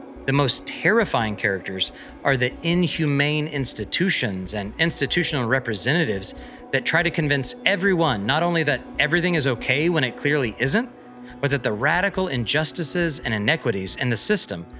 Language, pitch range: English, 125-170 Hz